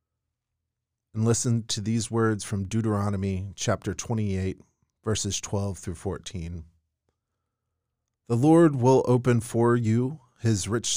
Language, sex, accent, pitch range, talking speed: English, male, American, 95-120 Hz, 115 wpm